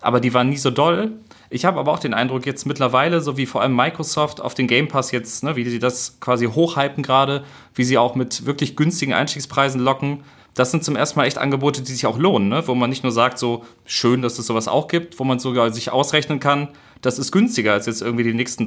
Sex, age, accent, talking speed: male, 30-49, German, 240 wpm